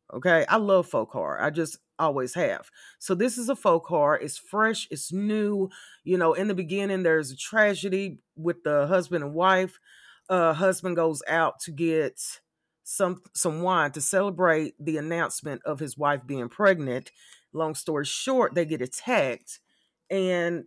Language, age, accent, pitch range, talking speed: English, 30-49, American, 150-190 Hz, 165 wpm